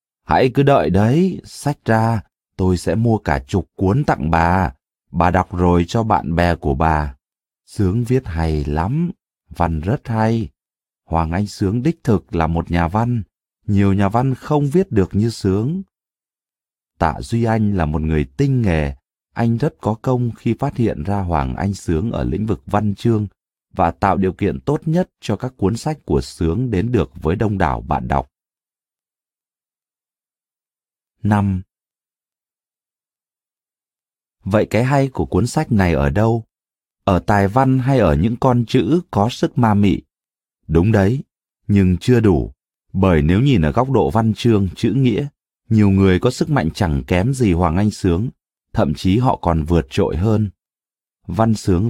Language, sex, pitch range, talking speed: Vietnamese, male, 85-120 Hz, 170 wpm